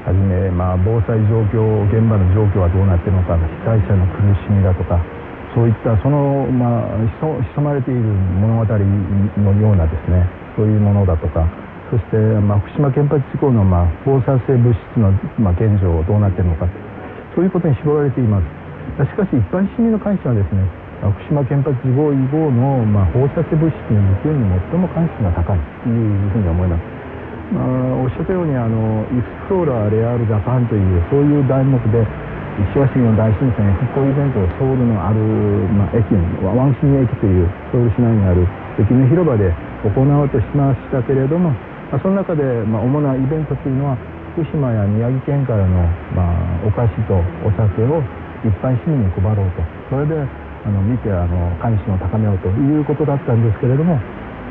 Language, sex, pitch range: Korean, male, 95-135 Hz